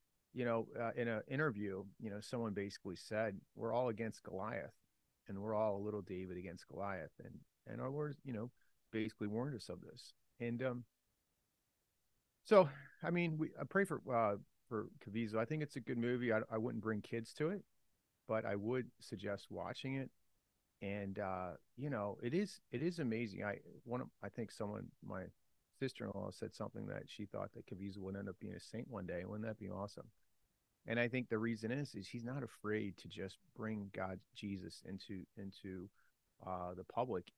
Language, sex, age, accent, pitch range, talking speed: English, male, 30-49, American, 100-120 Hz, 195 wpm